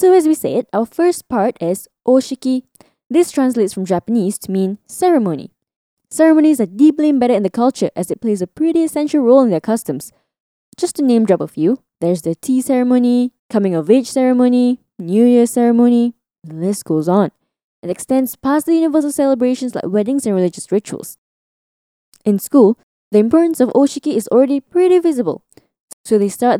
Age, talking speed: 10-29, 175 wpm